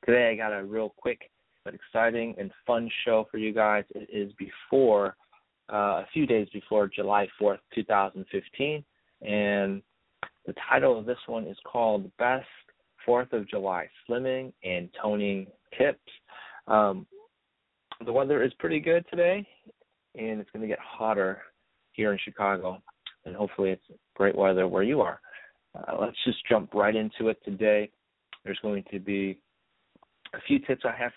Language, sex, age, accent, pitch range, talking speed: English, male, 30-49, American, 100-120 Hz, 160 wpm